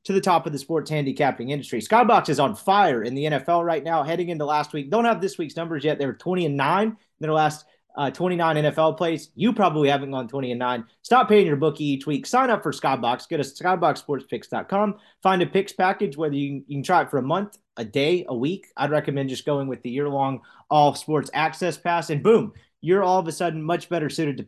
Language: English